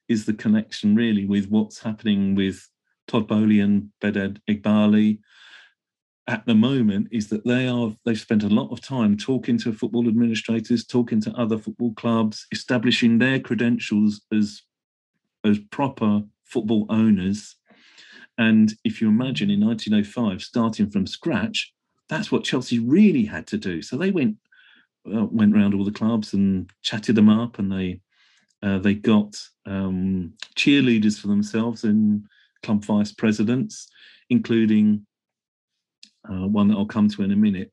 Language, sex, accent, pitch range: English, male, British, 105-135 Hz